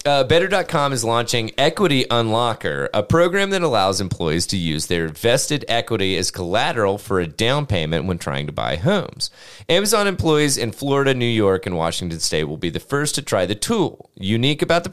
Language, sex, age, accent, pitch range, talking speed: English, male, 30-49, American, 90-140 Hz, 190 wpm